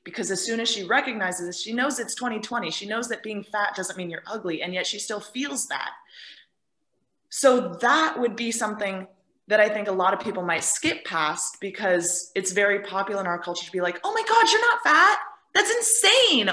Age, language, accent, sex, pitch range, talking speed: 20-39, English, American, female, 175-230 Hz, 215 wpm